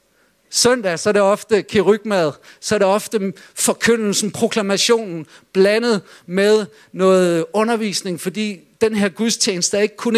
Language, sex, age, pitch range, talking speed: Danish, male, 50-69, 165-220 Hz, 135 wpm